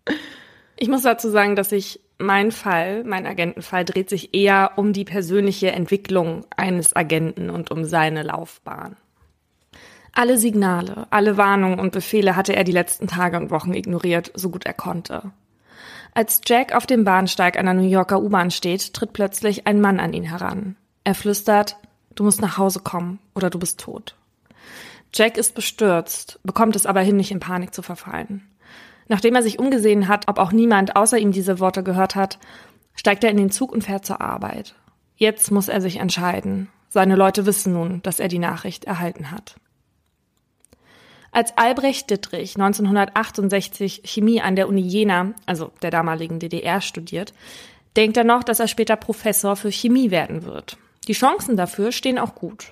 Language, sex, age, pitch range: German, female, 20-39, 185-215 Hz